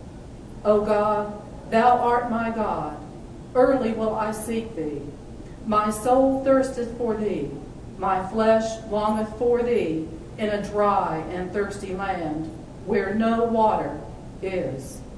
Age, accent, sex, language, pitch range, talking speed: 50-69, American, female, English, 180-235 Hz, 125 wpm